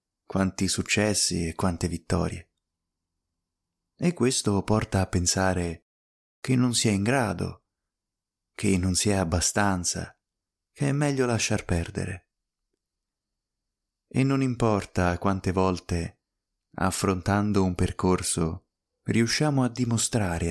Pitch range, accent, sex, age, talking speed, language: 90-110 Hz, native, male, 20-39, 110 wpm, Italian